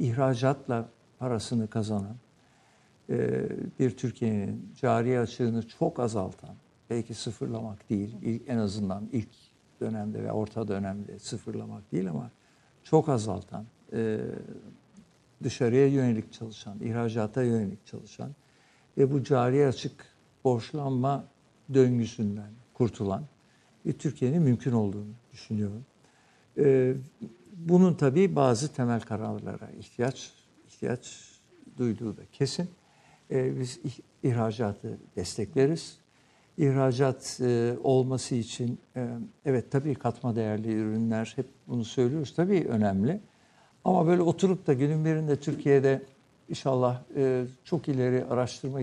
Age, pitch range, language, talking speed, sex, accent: 60-79, 115-140 Hz, Turkish, 105 wpm, male, native